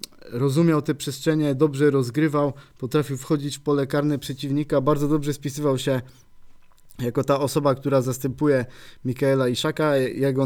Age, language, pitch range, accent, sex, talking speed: 20-39, Polish, 130-145 Hz, native, male, 130 wpm